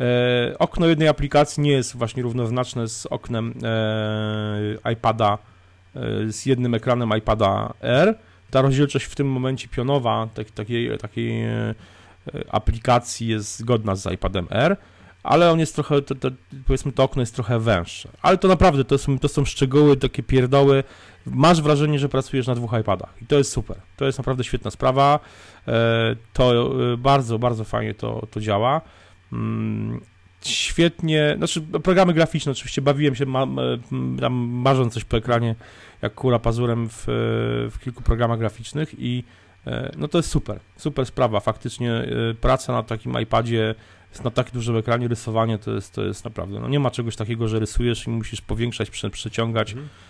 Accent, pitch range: native, 110-135 Hz